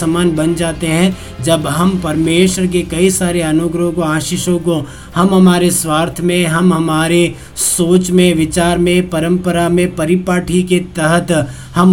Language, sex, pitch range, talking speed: Hindi, male, 160-185 Hz, 150 wpm